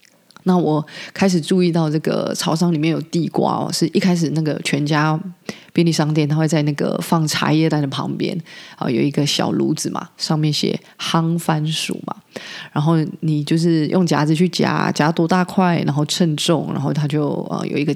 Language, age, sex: Chinese, 20-39, female